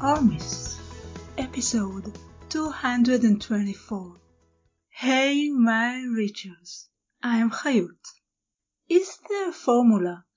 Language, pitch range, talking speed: English, 200-255 Hz, 75 wpm